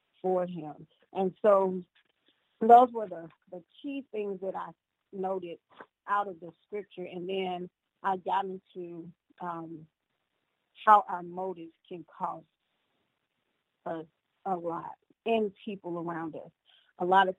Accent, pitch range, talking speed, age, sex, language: American, 170-190 Hz, 130 wpm, 40-59, female, English